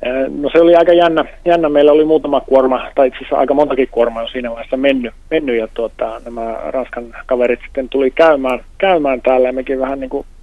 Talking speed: 200 wpm